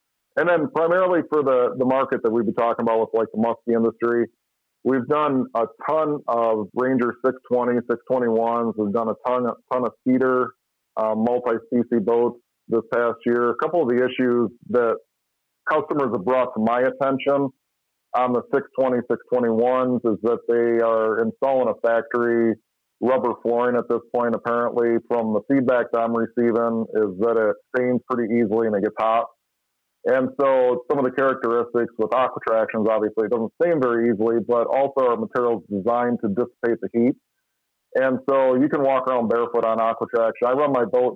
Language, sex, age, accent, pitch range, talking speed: English, male, 40-59, American, 115-125 Hz, 175 wpm